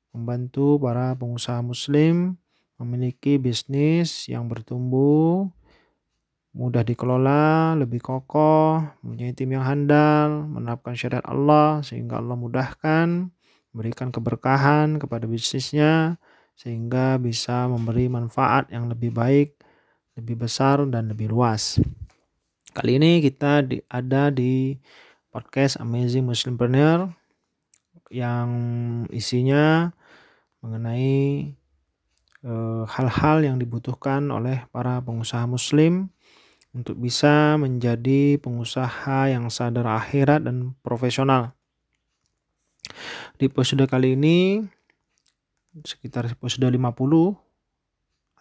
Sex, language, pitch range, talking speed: male, Indonesian, 120-150 Hz, 90 wpm